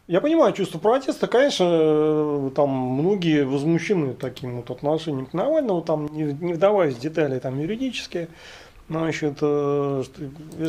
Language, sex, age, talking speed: Russian, male, 40-59, 120 wpm